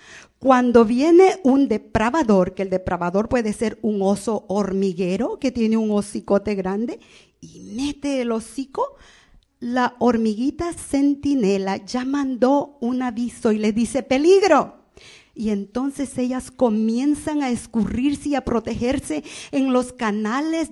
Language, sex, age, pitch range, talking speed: English, female, 50-69, 205-275 Hz, 125 wpm